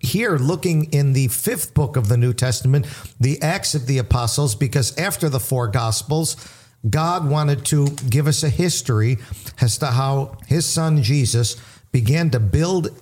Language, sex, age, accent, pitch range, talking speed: English, male, 50-69, American, 120-150 Hz, 165 wpm